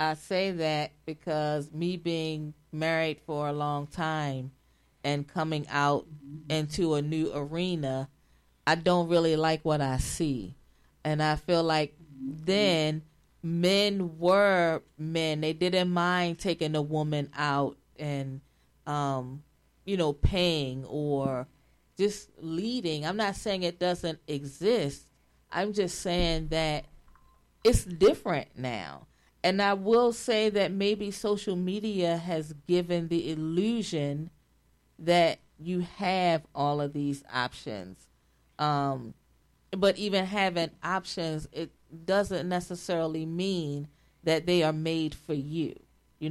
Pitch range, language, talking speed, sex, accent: 145-175 Hz, English, 125 wpm, female, American